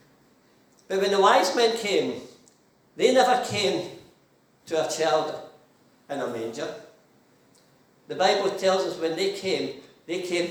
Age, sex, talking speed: 60-79, male, 135 wpm